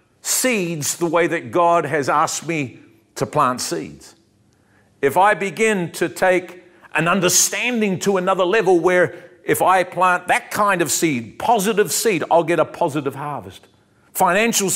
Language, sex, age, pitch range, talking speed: English, male, 50-69, 130-195 Hz, 150 wpm